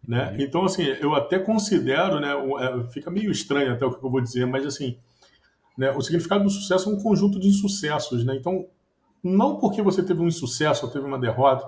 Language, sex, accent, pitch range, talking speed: Portuguese, male, Brazilian, 130-185 Hz, 205 wpm